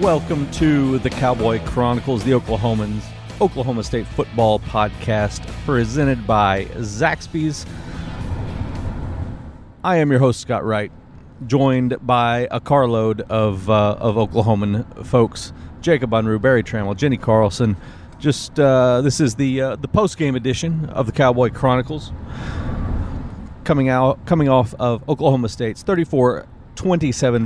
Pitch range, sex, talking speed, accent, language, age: 110-135 Hz, male, 130 wpm, American, English, 40-59